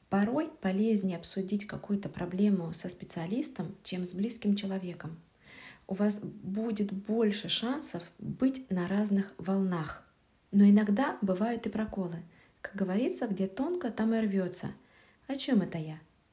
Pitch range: 185-225 Hz